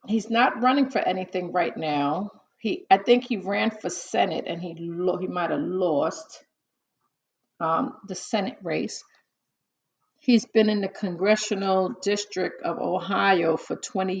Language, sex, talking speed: English, female, 150 wpm